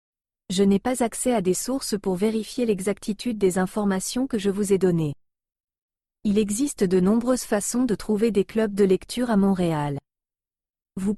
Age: 40-59